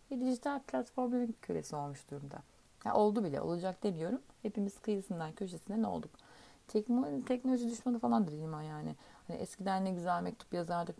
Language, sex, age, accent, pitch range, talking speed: Turkish, female, 40-59, native, 165-235 Hz, 145 wpm